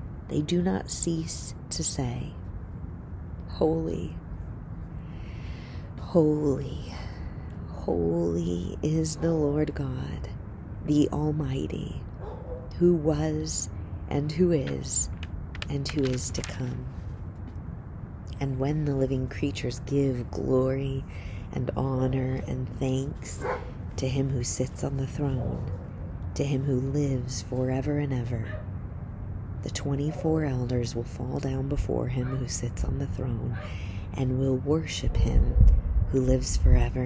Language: English